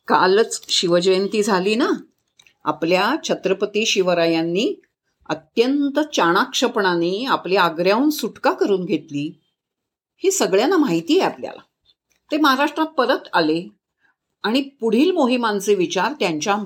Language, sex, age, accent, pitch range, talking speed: Marathi, female, 50-69, native, 185-275 Hz, 100 wpm